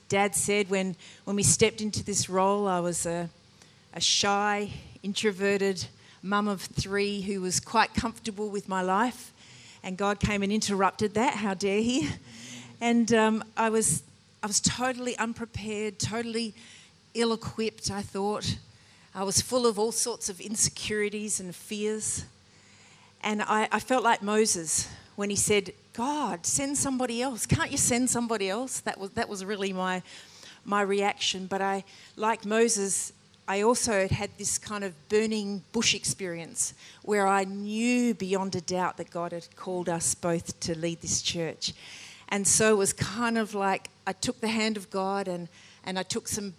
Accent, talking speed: Australian, 165 wpm